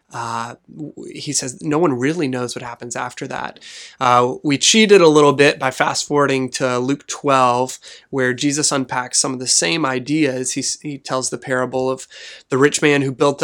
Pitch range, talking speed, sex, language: 130-145 Hz, 190 wpm, male, English